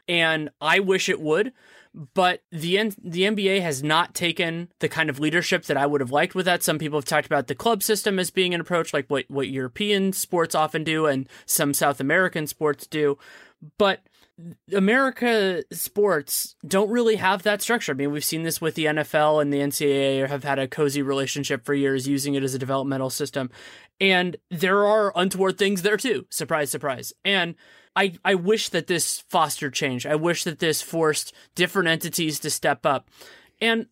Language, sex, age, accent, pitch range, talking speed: English, male, 20-39, American, 145-195 Hz, 190 wpm